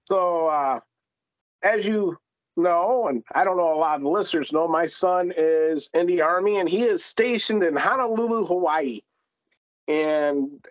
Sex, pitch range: male, 170-265 Hz